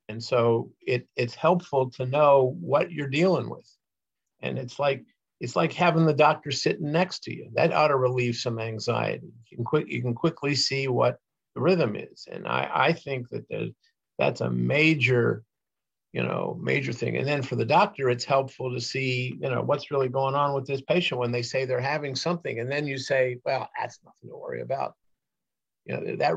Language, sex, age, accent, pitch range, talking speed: English, male, 50-69, American, 120-145 Hz, 205 wpm